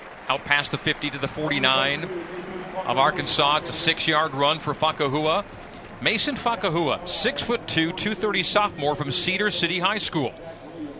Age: 40-59